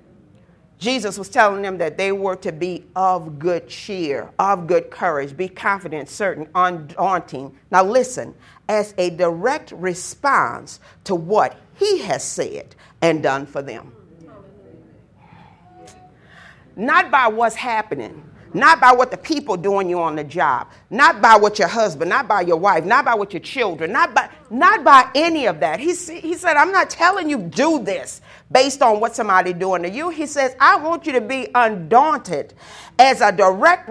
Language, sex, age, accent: English, female, 50-69, American